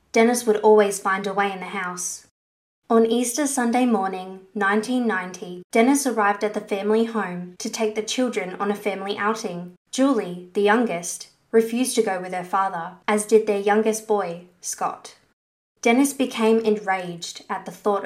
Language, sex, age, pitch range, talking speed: English, female, 20-39, 190-225 Hz, 165 wpm